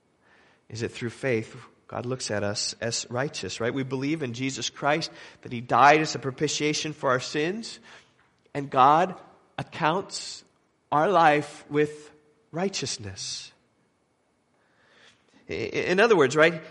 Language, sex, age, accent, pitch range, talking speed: English, male, 40-59, American, 140-190 Hz, 130 wpm